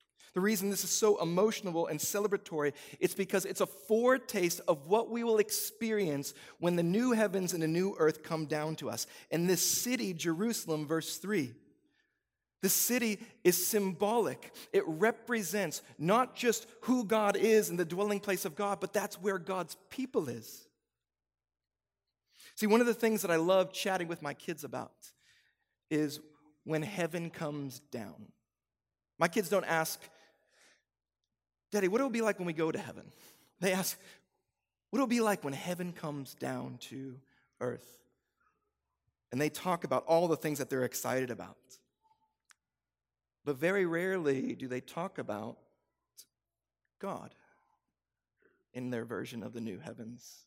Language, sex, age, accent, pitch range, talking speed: English, male, 40-59, American, 145-205 Hz, 155 wpm